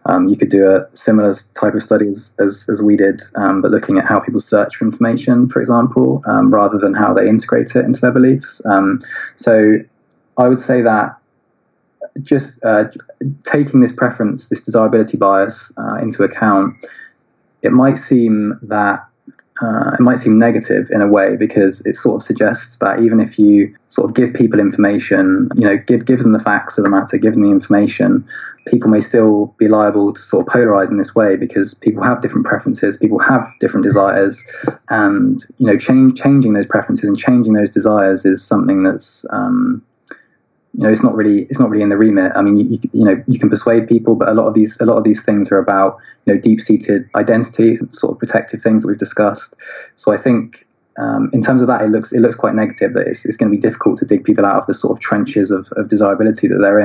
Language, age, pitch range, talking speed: English, 20-39, 105-125 Hz, 220 wpm